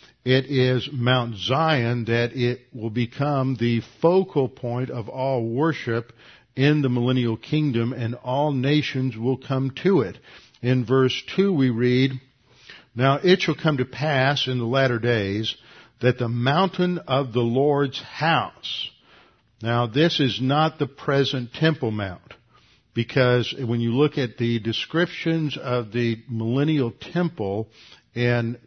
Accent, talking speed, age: American, 140 wpm, 50-69